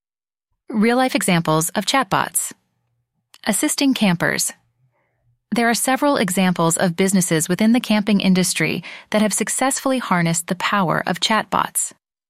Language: English